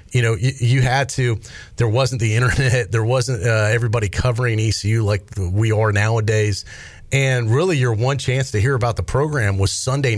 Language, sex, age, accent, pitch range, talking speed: English, male, 40-59, American, 100-125 Hz, 190 wpm